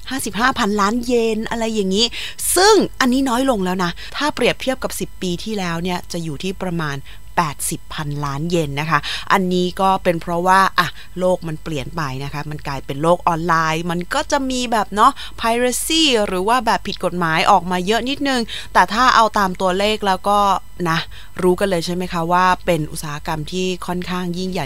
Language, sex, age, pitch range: Thai, female, 20-39, 170-225 Hz